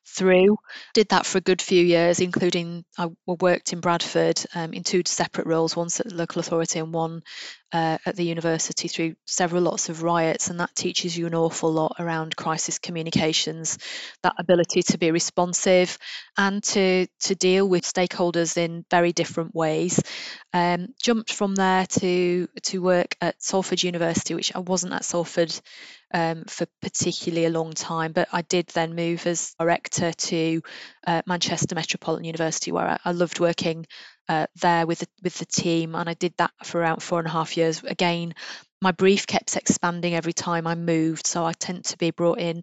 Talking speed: 185 wpm